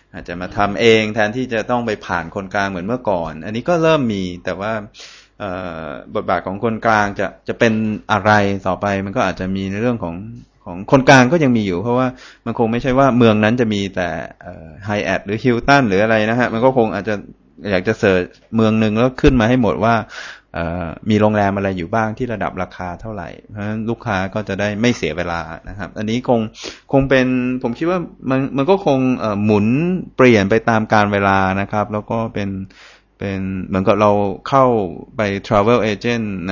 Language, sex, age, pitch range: Thai, male, 20-39, 95-115 Hz